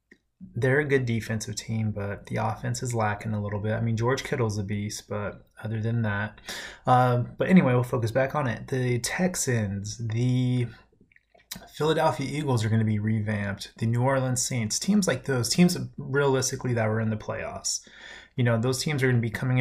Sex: male